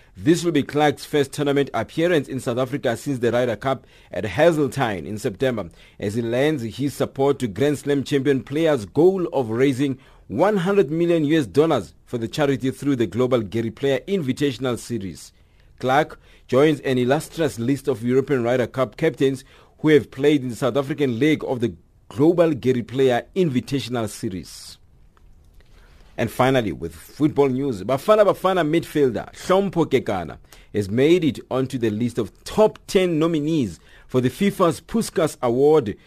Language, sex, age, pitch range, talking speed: English, male, 50-69, 120-150 Hz, 155 wpm